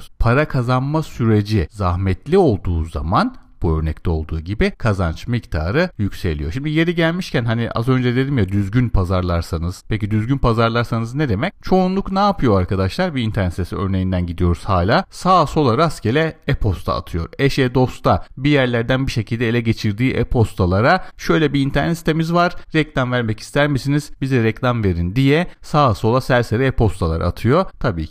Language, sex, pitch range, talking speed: Turkish, male, 95-145 Hz, 150 wpm